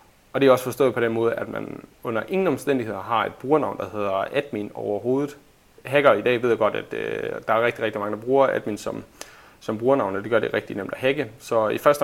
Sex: male